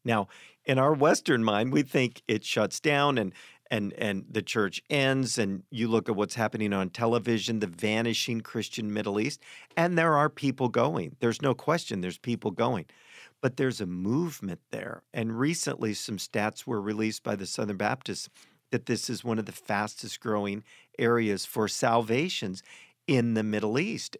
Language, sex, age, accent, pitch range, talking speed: English, male, 50-69, American, 110-140 Hz, 175 wpm